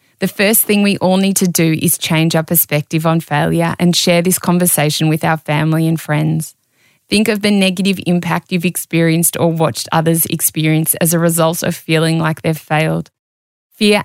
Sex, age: female, 20-39